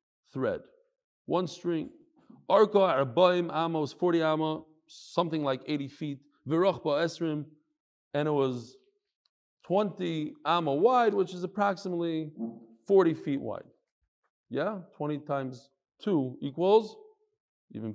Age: 40-59